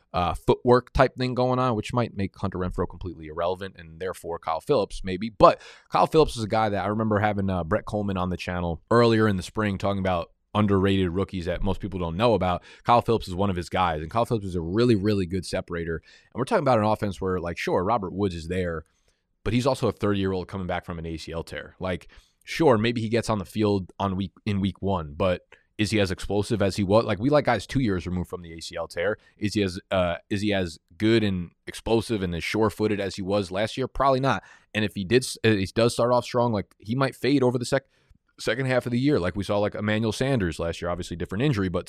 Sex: male